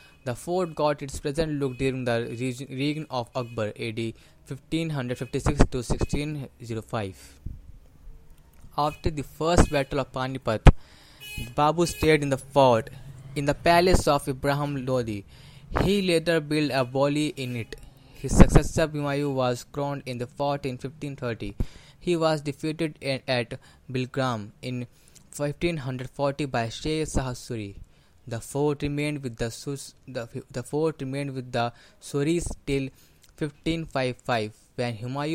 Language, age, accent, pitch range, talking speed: English, 20-39, Indian, 120-145 Hz, 135 wpm